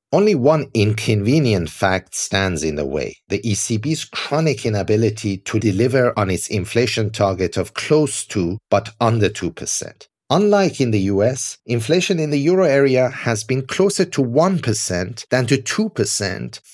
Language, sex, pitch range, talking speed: English, male, 105-150 Hz, 145 wpm